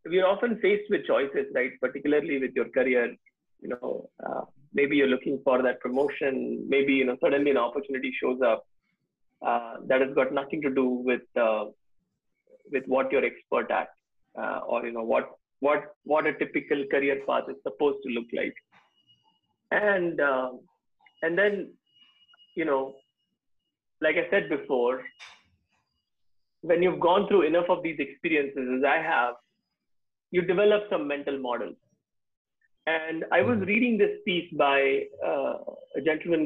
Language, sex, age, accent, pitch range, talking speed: English, male, 30-49, Indian, 135-190 Hz, 155 wpm